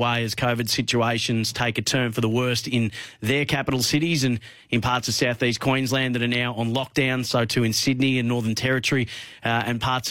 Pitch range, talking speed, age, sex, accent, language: 120-140 Hz, 210 wpm, 30-49, male, Australian, English